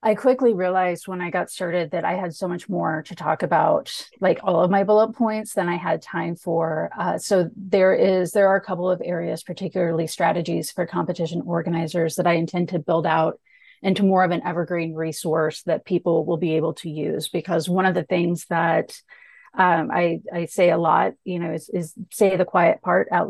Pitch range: 165-185 Hz